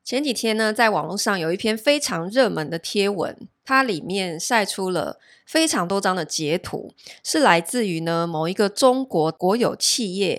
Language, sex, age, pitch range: Chinese, female, 20-39, 180-245 Hz